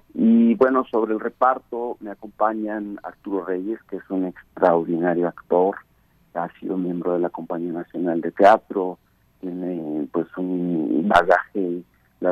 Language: Spanish